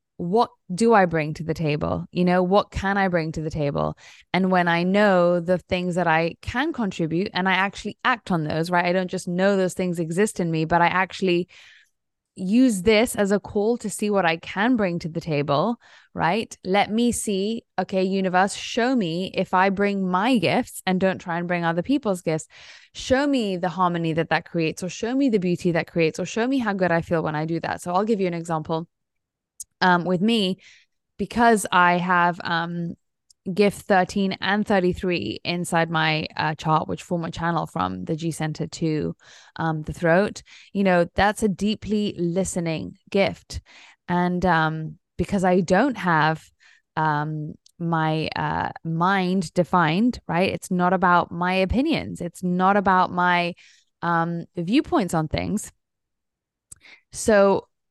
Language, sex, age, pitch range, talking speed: English, female, 10-29, 165-200 Hz, 175 wpm